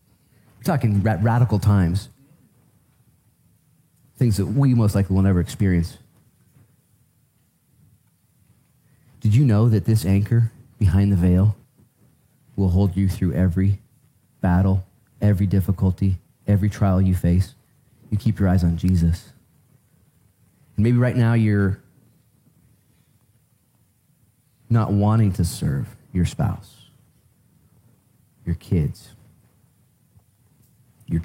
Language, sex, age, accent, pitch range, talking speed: English, male, 30-49, American, 95-125 Hz, 100 wpm